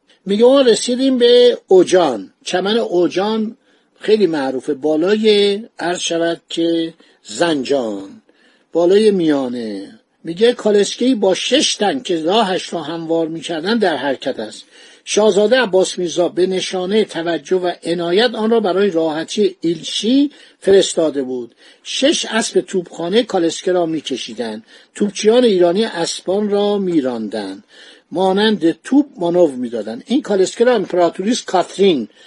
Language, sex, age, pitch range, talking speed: Persian, male, 60-79, 170-230 Hz, 120 wpm